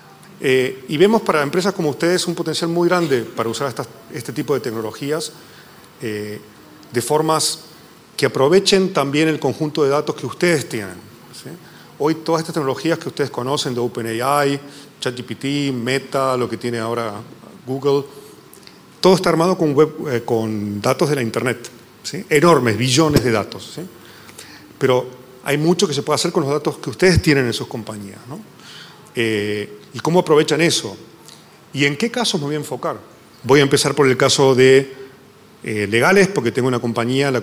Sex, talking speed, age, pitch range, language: male, 175 wpm, 40-59, 120-155 Hz, English